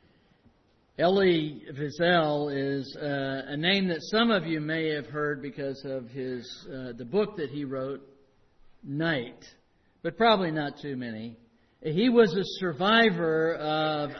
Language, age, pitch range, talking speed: English, 60-79, 140-185 Hz, 140 wpm